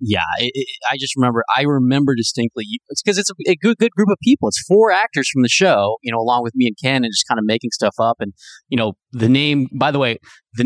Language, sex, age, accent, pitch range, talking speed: English, male, 30-49, American, 115-150 Hz, 260 wpm